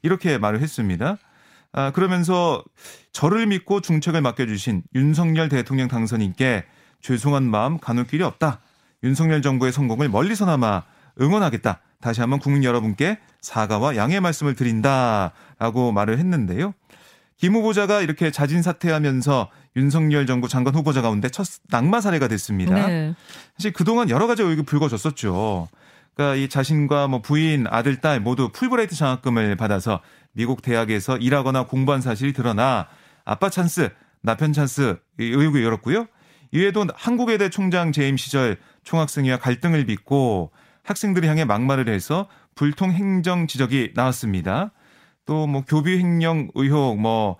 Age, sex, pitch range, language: 30-49, male, 125-165 Hz, Korean